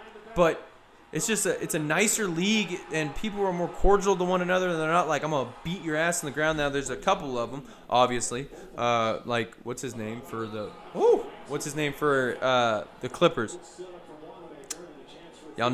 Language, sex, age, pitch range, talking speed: English, male, 20-39, 120-170 Hz, 195 wpm